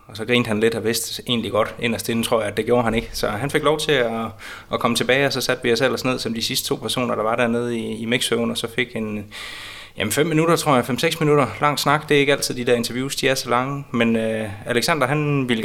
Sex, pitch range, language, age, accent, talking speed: male, 115-140 Hz, Danish, 20-39, native, 270 wpm